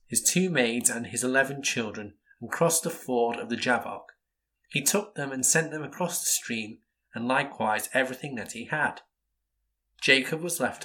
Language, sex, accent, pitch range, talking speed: English, male, British, 115-160 Hz, 175 wpm